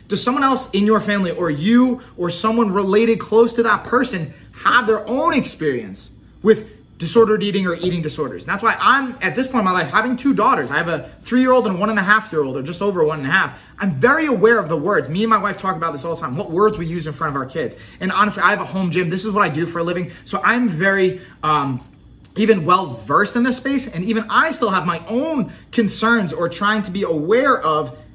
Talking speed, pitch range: 235 wpm, 155-215 Hz